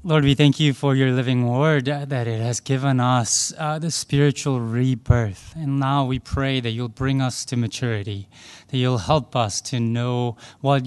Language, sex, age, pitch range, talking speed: English, male, 20-39, 125-185 Hz, 195 wpm